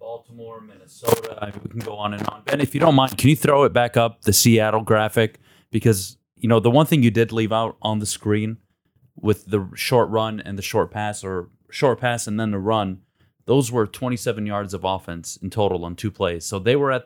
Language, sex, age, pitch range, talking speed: English, male, 30-49, 100-130 Hz, 230 wpm